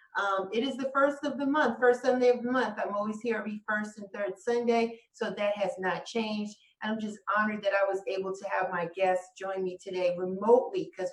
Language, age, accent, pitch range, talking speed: English, 40-59, American, 195-245 Hz, 230 wpm